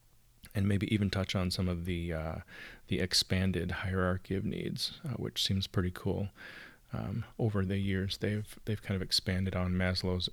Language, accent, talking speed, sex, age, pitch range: English, American, 175 wpm, male, 30-49, 90-110 Hz